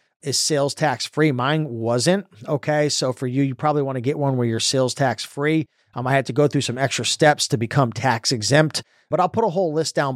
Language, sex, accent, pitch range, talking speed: English, male, American, 130-160 Hz, 225 wpm